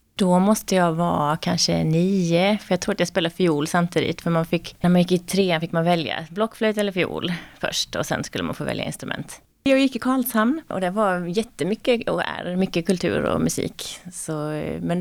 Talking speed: 205 wpm